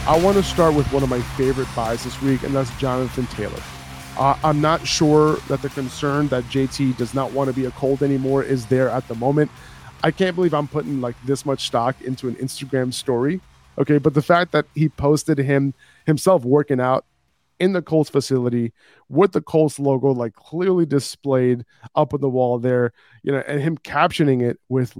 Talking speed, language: 205 wpm, English